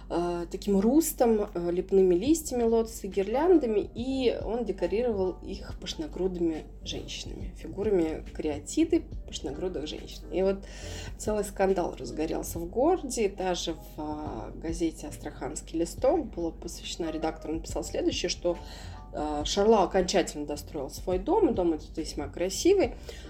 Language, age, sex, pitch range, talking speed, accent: Russian, 20-39, female, 170-235 Hz, 110 wpm, native